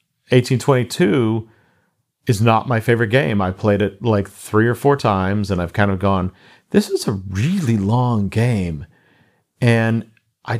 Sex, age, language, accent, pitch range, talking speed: male, 50-69, English, American, 95-115 Hz, 155 wpm